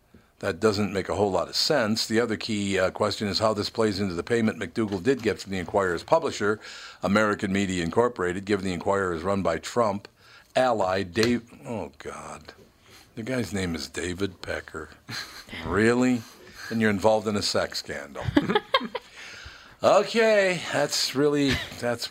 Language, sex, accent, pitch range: English, male, American, 95-115 Hz